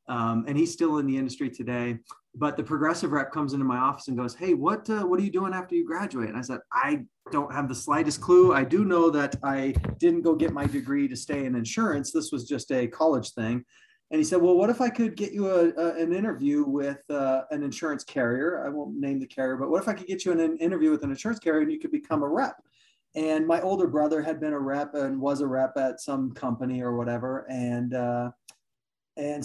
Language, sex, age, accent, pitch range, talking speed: English, male, 20-39, American, 140-180 Hz, 245 wpm